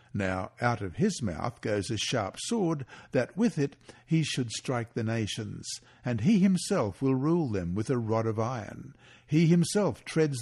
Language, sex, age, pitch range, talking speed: English, male, 60-79, 110-145 Hz, 180 wpm